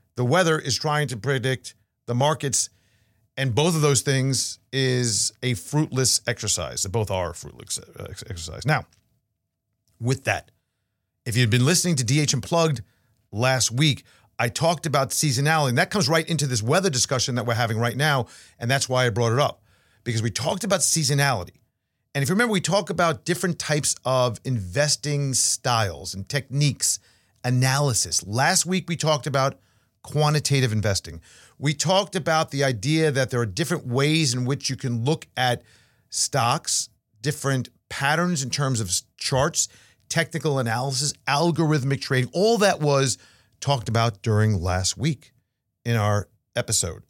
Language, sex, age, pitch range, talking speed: English, male, 40-59, 110-150 Hz, 155 wpm